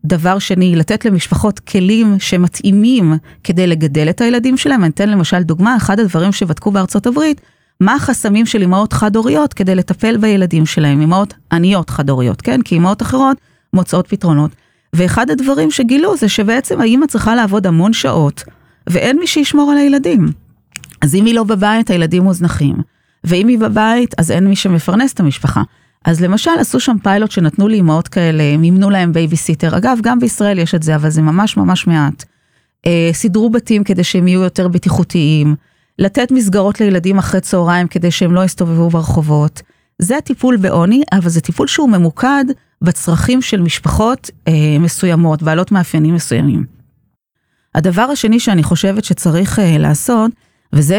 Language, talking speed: Hebrew, 155 wpm